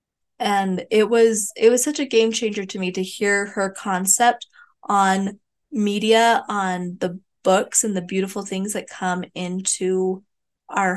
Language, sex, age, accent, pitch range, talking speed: English, female, 20-39, American, 185-225 Hz, 155 wpm